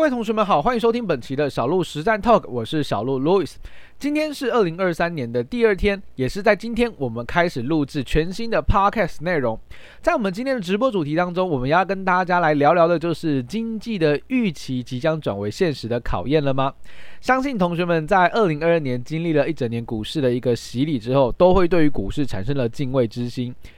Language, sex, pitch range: Chinese, male, 125-185 Hz